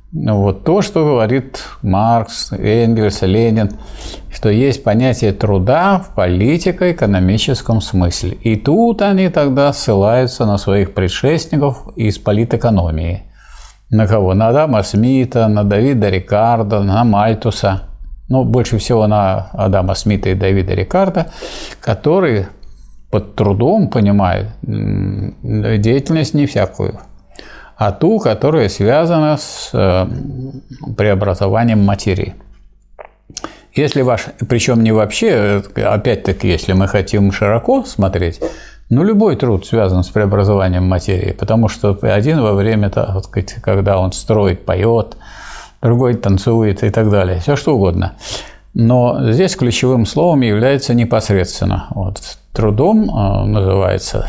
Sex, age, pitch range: male, 50-69, 100-125 Hz